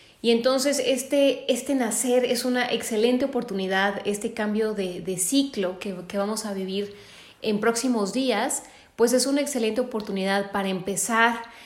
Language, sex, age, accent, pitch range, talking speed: Spanish, female, 20-39, Mexican, 200-250 Hz, 150 wpm